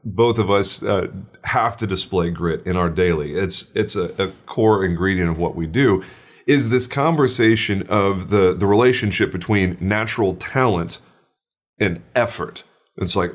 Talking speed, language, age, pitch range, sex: 155 wpm, English, 30-49, 90-115 Hz, male